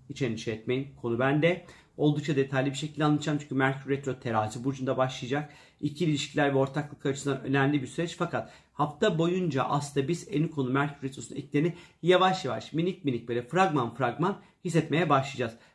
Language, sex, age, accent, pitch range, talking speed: Turkish, male, 40-59, native, 130-160 Hz, 160 wpm